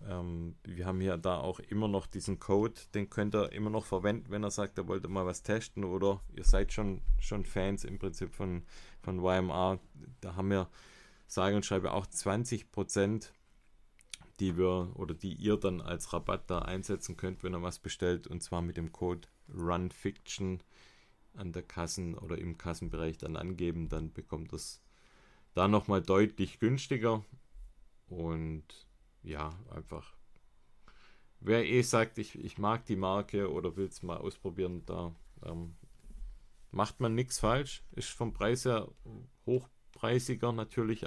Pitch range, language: 90-105 Hz, German